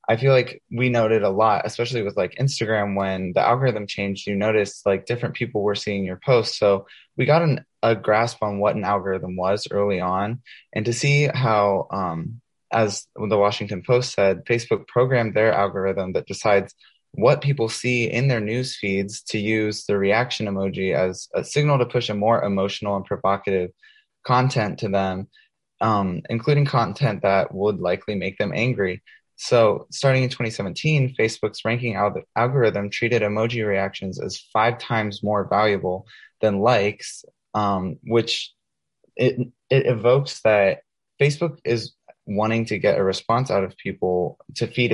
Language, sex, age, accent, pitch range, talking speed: English, male, 20-39, American, 100-120 Hz, 165 wpm